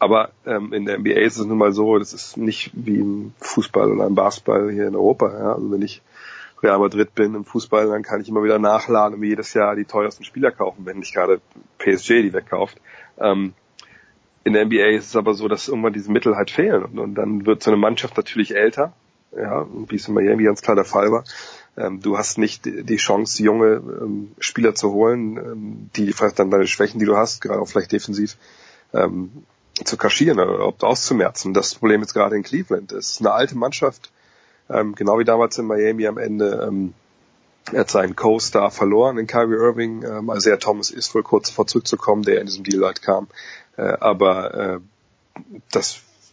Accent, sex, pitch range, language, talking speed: German, male, 105-110 Hz, German, 200 wpm